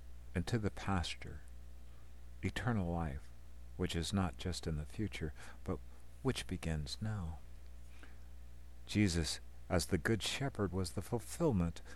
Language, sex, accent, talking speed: English, male, American, 120 wpm